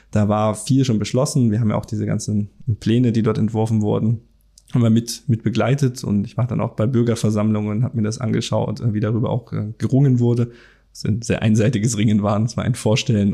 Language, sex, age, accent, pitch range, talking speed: German, male, 20-39, German, 110-120 Hz, 215 wpm